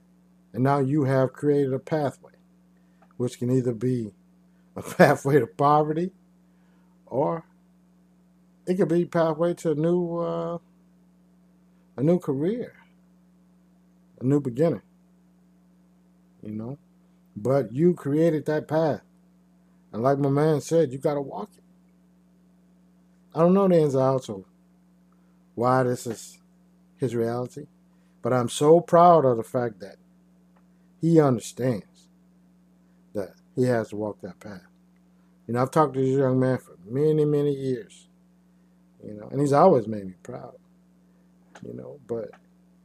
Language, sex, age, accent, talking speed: English, male, 50-69, American, 135 wpm